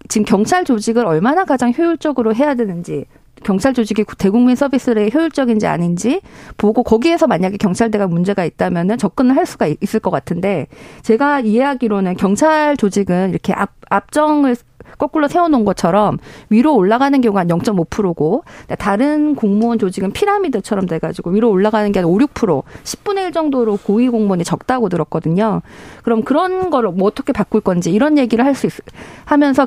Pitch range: 200-275 Hz